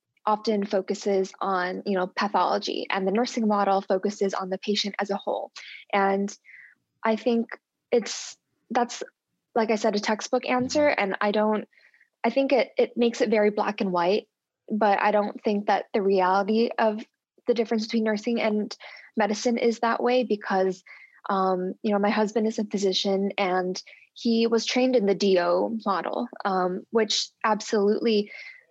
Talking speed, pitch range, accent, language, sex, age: 165 wpm, 195-230 Hz, American, English, female, 20-39